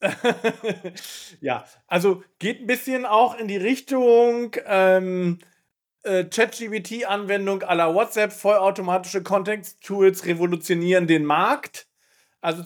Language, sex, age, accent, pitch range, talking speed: German, male, 40-59, German, 160-190 Hz, 95 wpm